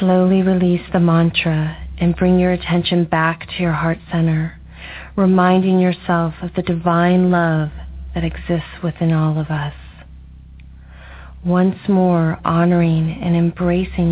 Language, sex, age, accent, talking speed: English, female, 40-59, American, 130 wpm